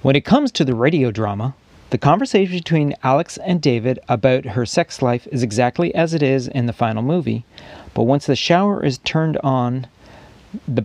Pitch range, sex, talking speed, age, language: 120-165 Hz, male, 190 wpm, 40-59, English